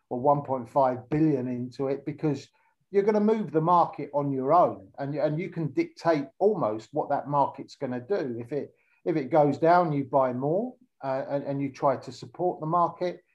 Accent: British